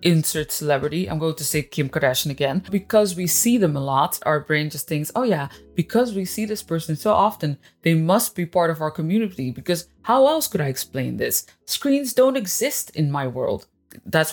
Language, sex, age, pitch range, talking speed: English, female, 20-39, 150-195 Hz, 205 wpm